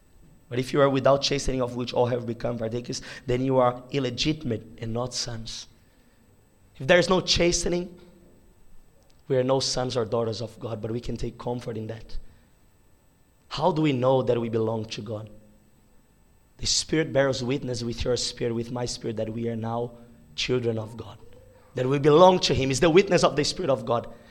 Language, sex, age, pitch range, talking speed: English, male, 20-39, 120-175 Hz, 195 wpm